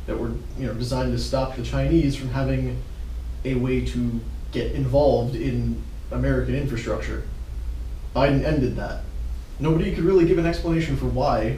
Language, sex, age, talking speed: English, male, 20-39, 155 wpm